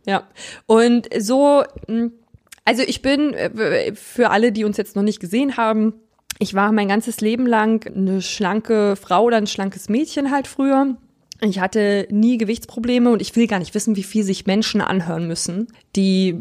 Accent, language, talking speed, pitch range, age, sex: German, German, 170 wpm, 195-230 Hz, 20-39, female